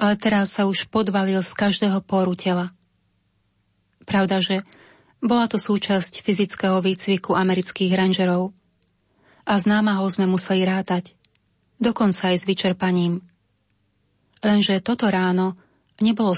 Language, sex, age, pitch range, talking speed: Slovak, female, 30-49, 180-200 Hz, 115 wpm